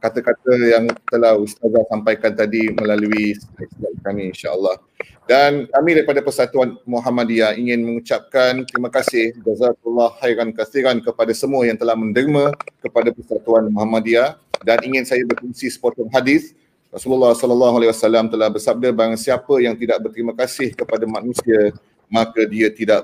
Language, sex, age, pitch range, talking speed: Malay, male, 30-49, 115-130 Hz, 140 wpm